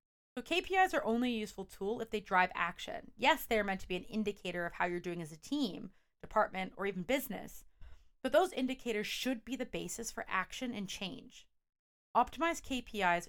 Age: 30-49